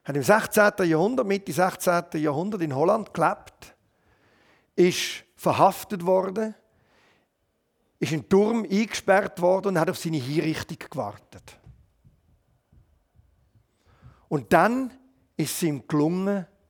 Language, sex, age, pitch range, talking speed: German, male, 50-69, 140-190 Hz, 110 wpm